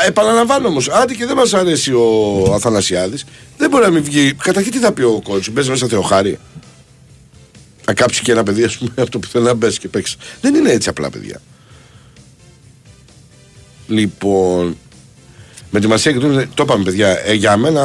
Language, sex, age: Greek, male, 60-79